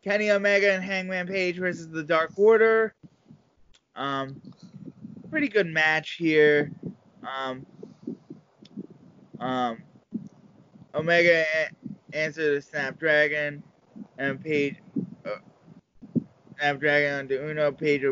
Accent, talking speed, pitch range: American, 95 wpm, 135-170 Hz